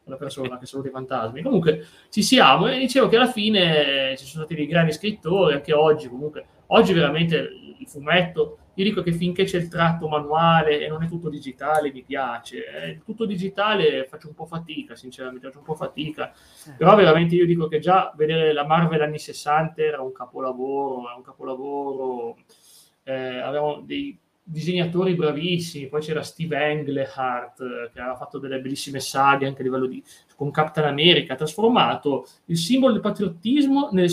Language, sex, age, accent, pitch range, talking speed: Italian, male, 20-39, native, 135-175 Hz, 175 wpm